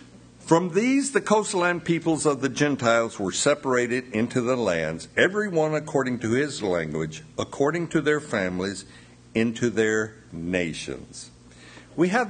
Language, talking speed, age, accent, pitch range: English, 135 wpm, 60-79, American, 90-145 Hz